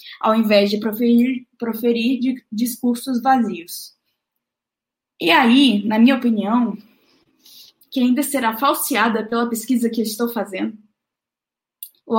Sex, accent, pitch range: female, Brazilian, 230-275 Hz